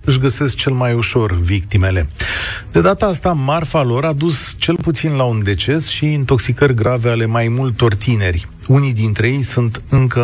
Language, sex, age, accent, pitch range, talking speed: Romanian, male, 40-59, native, 100-135 Hz, 175 wpm